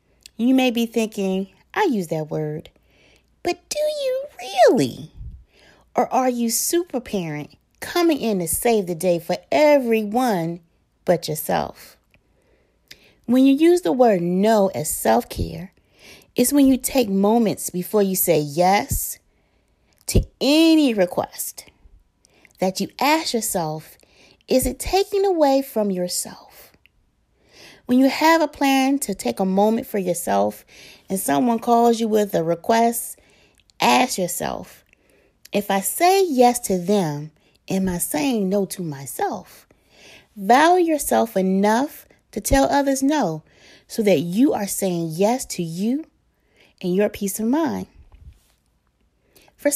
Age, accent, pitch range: 30-49, American, 175-260 Hz